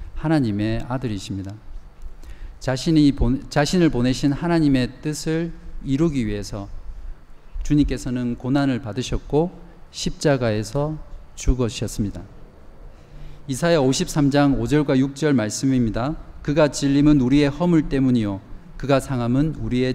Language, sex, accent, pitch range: Korean, male, native, 110-145 Hz